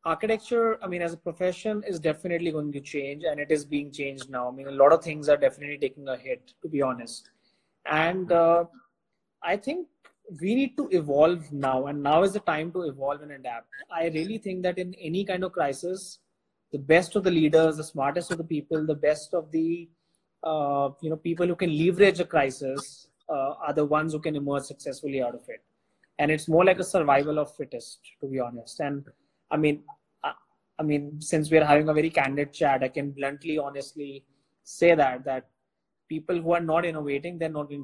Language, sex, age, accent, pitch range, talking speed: English, male, 30-49, Indian, 145-180 Hz, 210 wpm